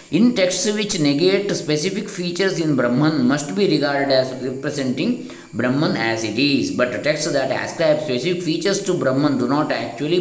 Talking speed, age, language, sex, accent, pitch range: 165 wpm, 20-39, Kannada, male, native, 120-155 Hz